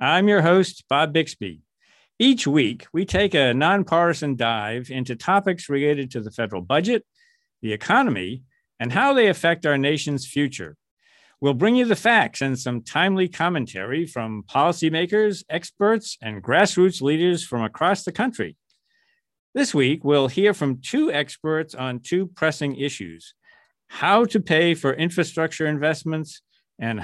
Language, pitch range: English, 125-170 Hz